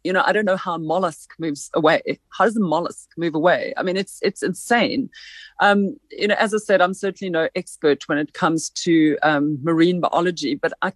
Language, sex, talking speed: English, female, 220 wpm